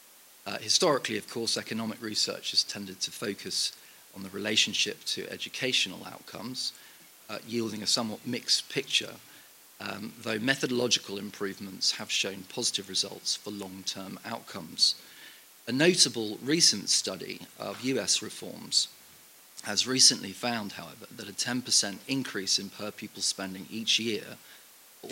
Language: English